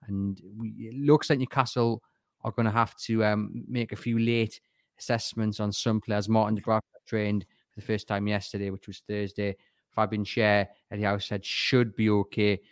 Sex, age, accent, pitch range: male, 30-49, British, 105-120 Hz